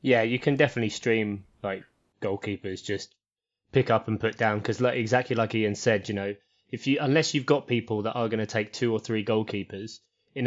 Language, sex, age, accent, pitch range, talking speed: English, male, 20-39, British, 105-125 Hz, 210 wpm